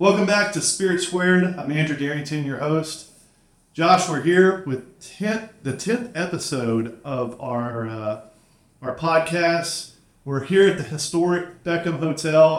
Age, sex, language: 40-59, male, English